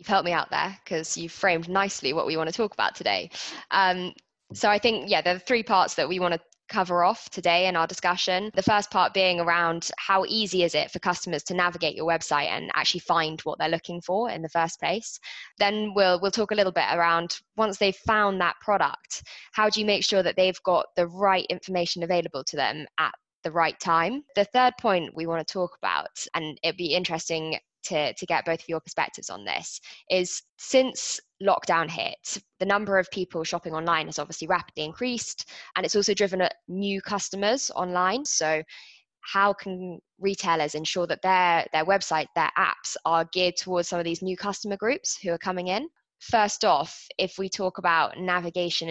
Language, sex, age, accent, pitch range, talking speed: English, female, 20-39, British, 170-195 Hz, 205 wpm